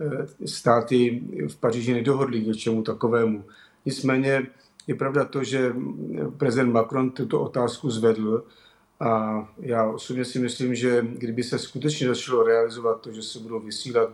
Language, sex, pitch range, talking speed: Slovak, male, 110-125 Hz, 140 wpm